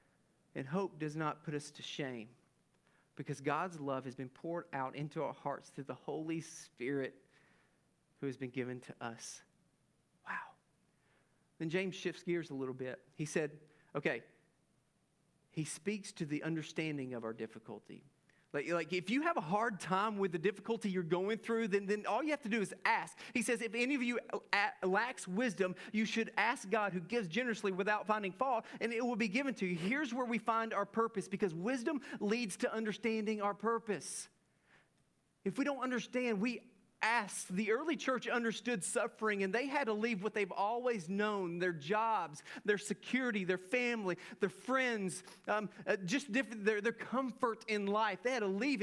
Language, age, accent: English, 40-59, American